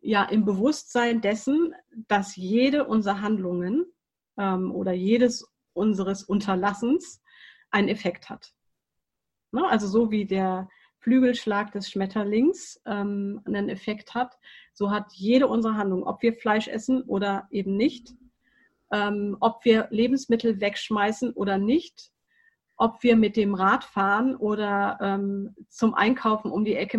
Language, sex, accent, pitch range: German, female, German, 200-235 Hz